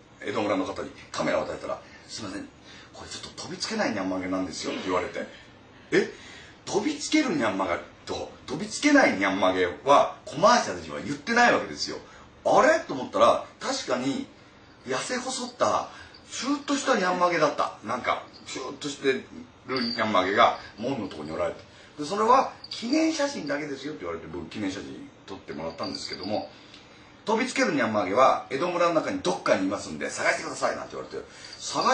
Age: 30-49